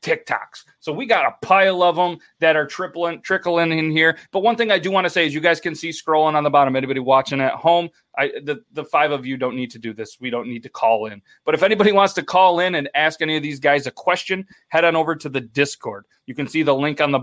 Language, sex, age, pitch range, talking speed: English, male, 30-49, 140-185 Hz, 270 wpm